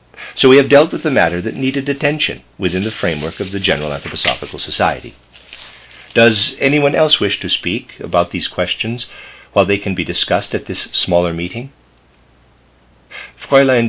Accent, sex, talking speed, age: American, male, 160 wpm, 50-69